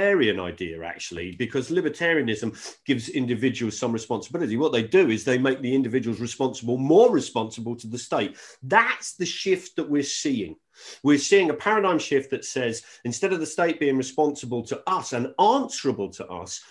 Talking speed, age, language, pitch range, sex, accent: 170 wpm, 40-59, English, 125-165 Hz, male, British